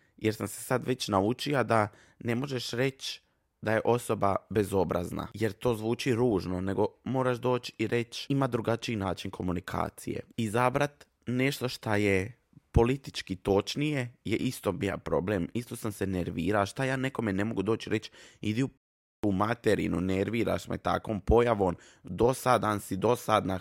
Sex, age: male, 20-39